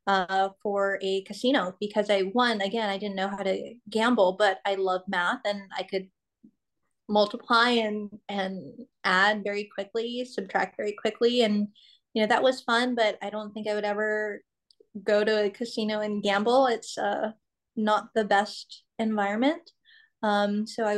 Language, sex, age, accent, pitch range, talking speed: English, female, 20-39, American, 195-225 Hz, 165 wpm